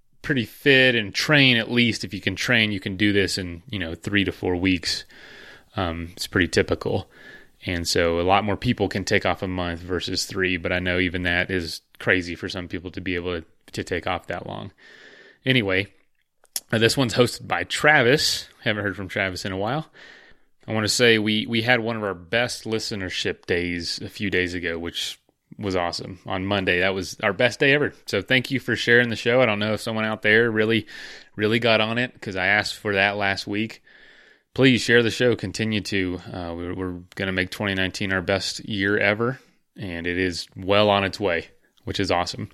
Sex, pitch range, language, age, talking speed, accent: male, 95-115 Hz, English, 30-49, 215 wpm, American